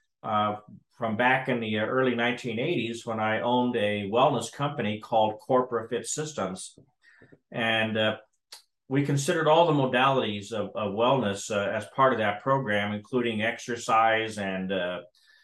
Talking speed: 145 wpm